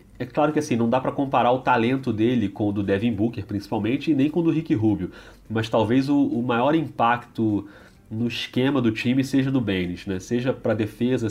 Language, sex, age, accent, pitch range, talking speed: Portuguese, male, 30-49, Brazilian, 100-120 Hz, 220 wpm